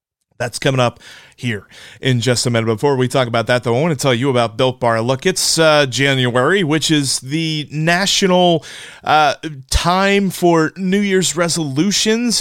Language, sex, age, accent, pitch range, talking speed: English, male, 30-49, American, 125-180 Hz, 175 wpm